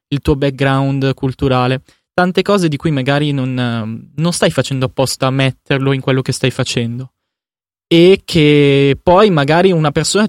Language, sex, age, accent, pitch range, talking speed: Italian, male, 20-39, native, 130-160 Hz, 155 wpm